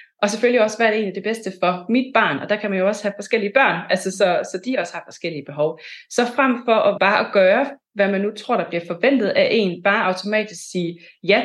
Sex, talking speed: female, 250 wpm